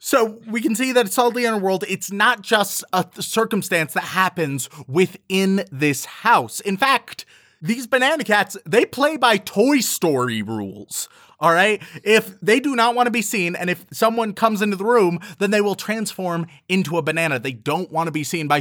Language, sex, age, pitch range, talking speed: English, male, 30-49, 145-215 Hz, 200 wpm